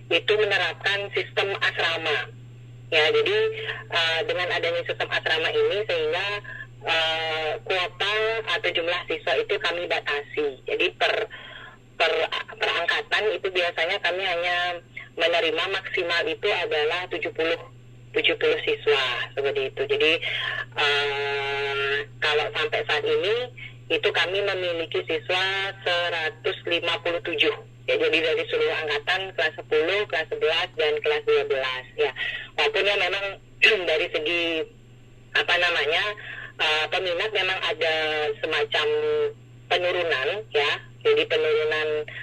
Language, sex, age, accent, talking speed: Indonesian, female, 30-49, native, 110 wpm